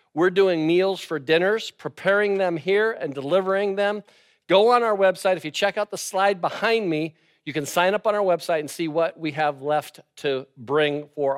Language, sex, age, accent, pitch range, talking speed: English, male, 50-69, American, 155-200 Hz, 205 wpm